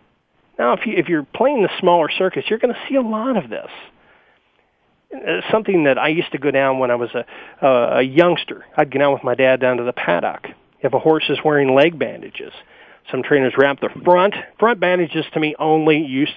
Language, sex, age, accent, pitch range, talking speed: English, male, 40-59, American, 140-180 Hz, 210 wpm